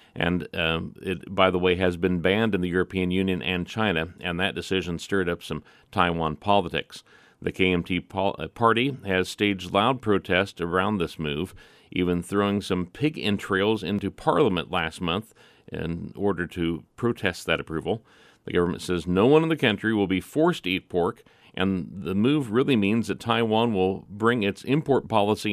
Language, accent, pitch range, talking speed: English, American, 90-115 Hz, 175 wpm